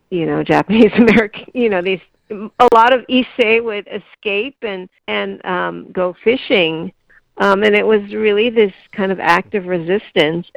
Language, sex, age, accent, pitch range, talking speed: English, female, 50-69, American, 160-200 Hz, 160 wpm